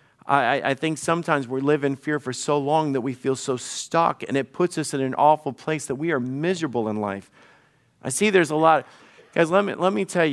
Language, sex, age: English, male, 50-69